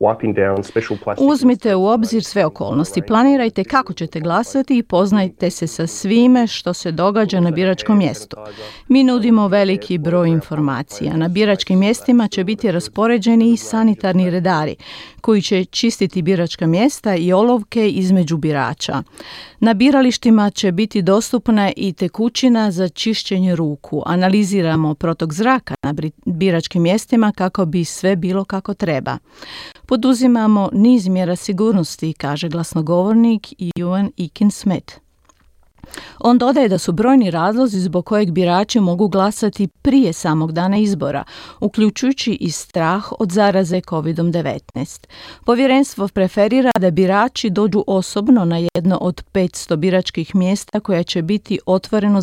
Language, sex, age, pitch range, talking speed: Croatian, female, 40-59, 175-220 Hz, 125 wpm